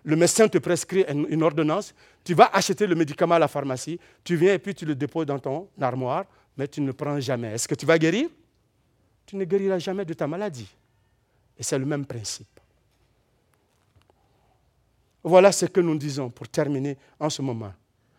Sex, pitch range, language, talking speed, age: male, 140-225 Hz, French, 190 wpm, 50-69